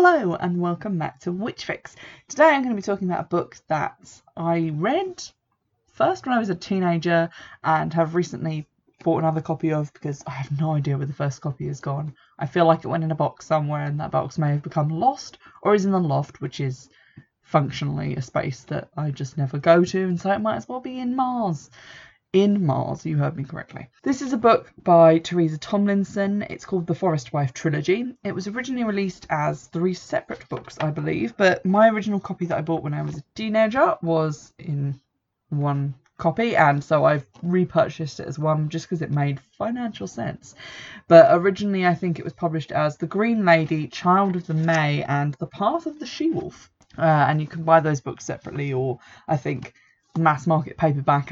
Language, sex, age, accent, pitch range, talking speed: English, female, 20-39, British, 145-195 Hz, 205 wpm